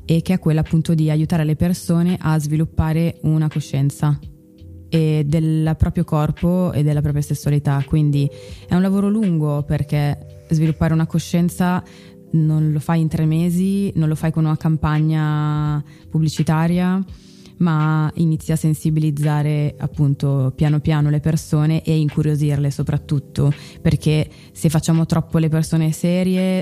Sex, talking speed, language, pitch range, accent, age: female, 140 wpm, Italian, 150-165 Hz, native, 20-39